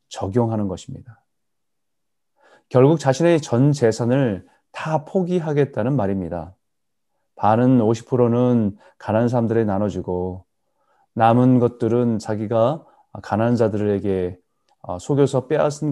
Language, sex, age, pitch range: Korean, male, 30-49, 100-135 Hz